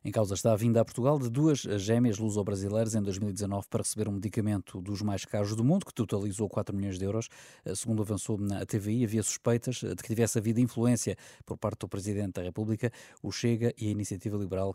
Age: 20-39